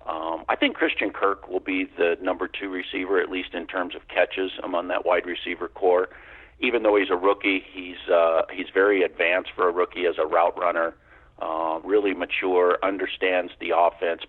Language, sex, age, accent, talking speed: English, male, 50-69, American, 195 wpm